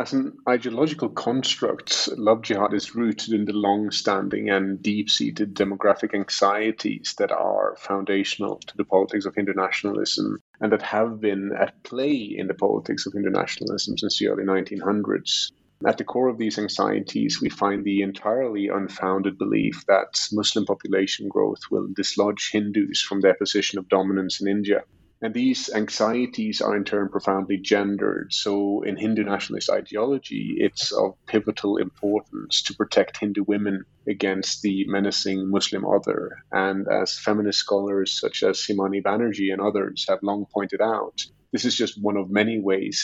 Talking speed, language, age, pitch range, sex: 155 wpm, English, 30-49, 100-110 Hz, male